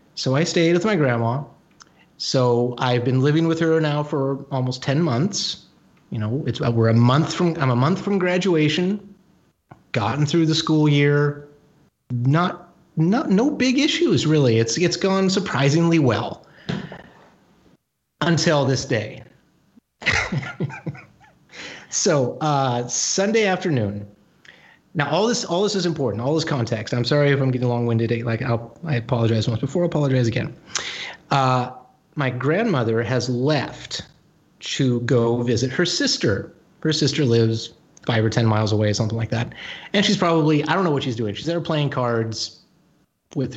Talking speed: 155 wpm